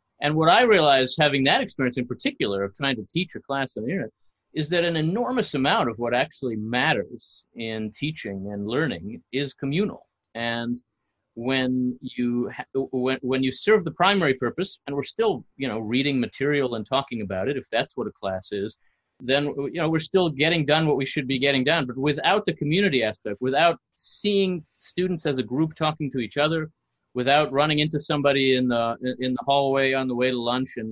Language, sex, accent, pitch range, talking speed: English, male, American, 120-150 Hz, 200 wpm